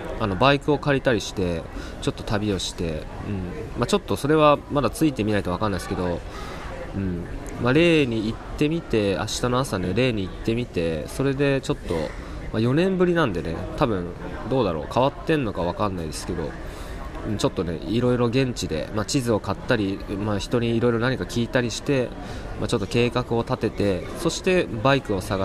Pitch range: 90-135 Hz